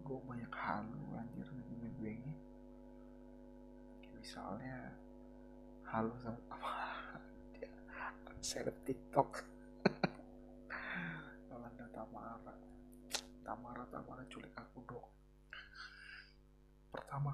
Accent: native